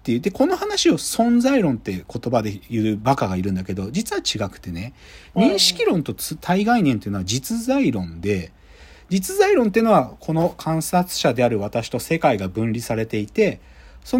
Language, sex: Japanese, male